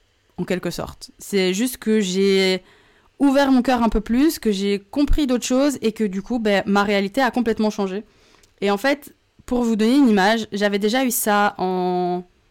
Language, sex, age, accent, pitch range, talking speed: French, female, 20-39, French, 200-255 Hz, 195 wpm